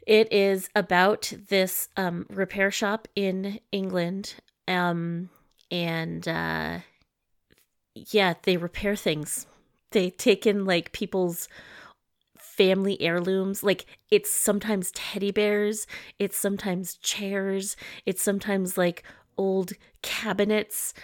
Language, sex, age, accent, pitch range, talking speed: English, female, 30-49, American, 185-225 Hz, 105 wpm